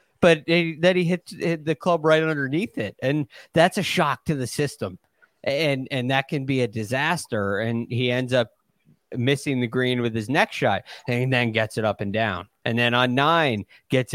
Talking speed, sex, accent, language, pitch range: 205 wpm, male, American, English, 115-140 Hz